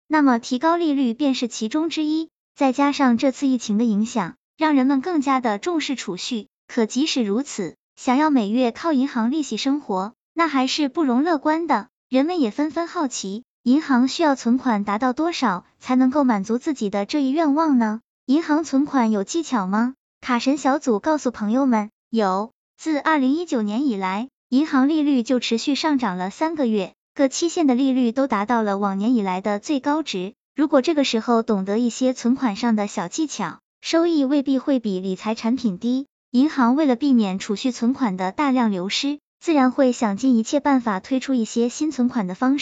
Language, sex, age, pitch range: Chinese, male, 10-29, 225-285 Hz